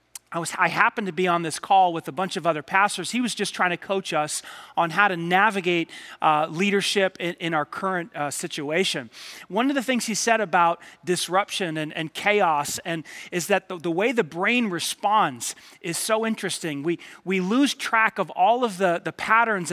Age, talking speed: 30-49, 205 wpm